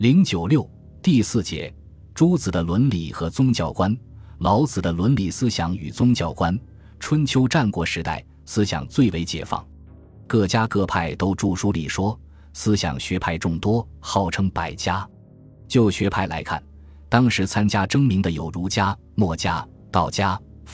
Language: Chinese